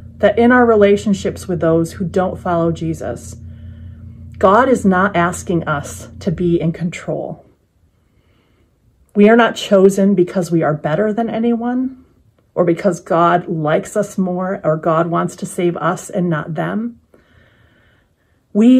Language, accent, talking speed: English, American, 145 wpm